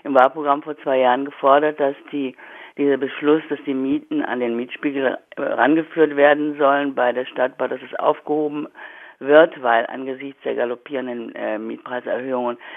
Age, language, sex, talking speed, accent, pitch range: 50-69, German, female, 150 wpm, German, 140-160 Hz